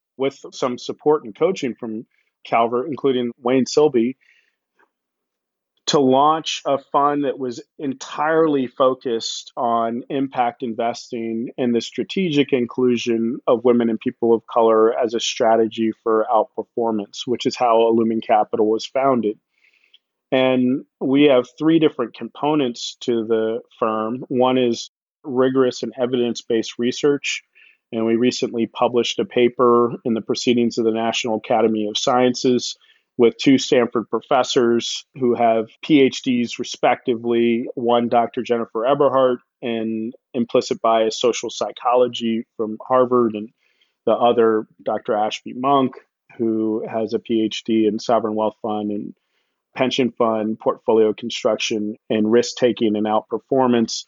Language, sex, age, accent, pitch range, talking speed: English, male, 40-59, American, 115-130 Hz, 130 wpm